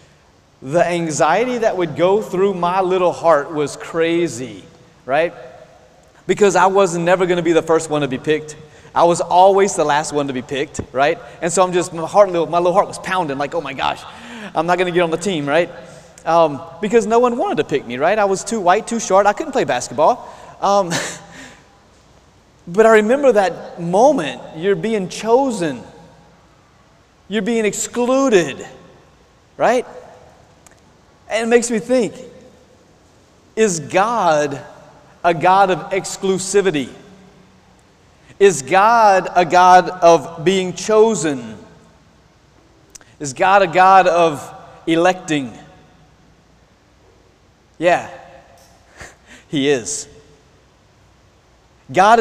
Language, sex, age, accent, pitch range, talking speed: English, male, 30-49, American, 160-200 Hz, 135 wpm